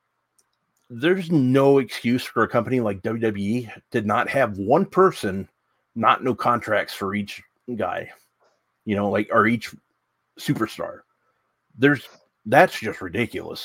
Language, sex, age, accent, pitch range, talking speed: English, male, 30-49, American, 105-125 Hz, 130 wpm